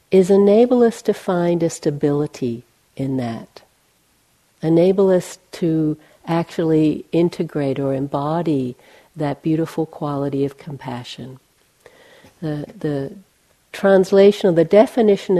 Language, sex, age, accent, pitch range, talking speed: English, female, 60-79, American, 150-200 Hz, 105 wpm